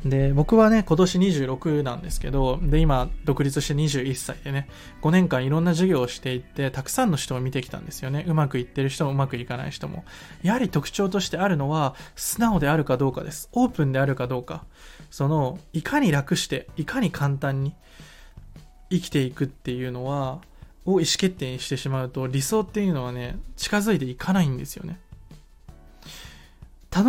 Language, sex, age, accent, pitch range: Japanese, male, 20-39, native, 130-185 Hz